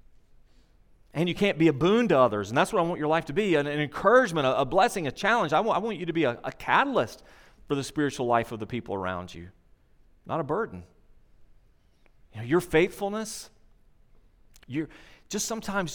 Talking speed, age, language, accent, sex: 205 wpm, 40-59, English, American, male